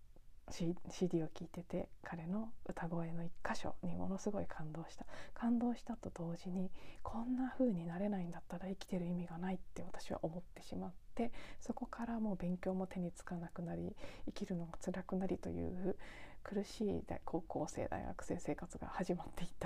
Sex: female